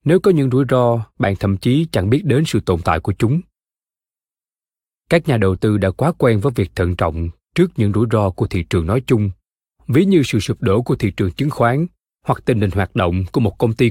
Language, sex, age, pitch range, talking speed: Vietnamese, male, 20-39, 100-140 Hz, 235 wpm